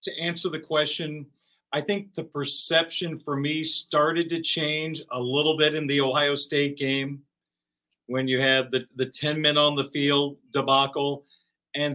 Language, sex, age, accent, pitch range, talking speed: English, male, 40-59, American, 145-175 Hz, 165 wpm